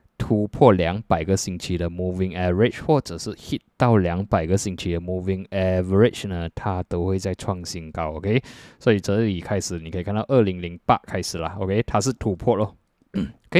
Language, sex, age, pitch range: Chinese, male, 20-39, 90-115 Hz